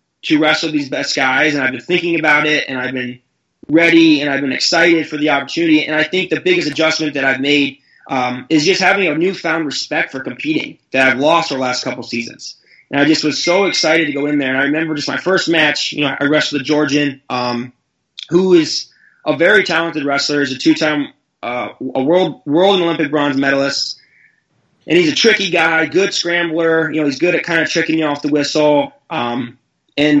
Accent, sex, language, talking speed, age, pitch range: American, male, English, 225 wpm, 20-39, 140-160 Hz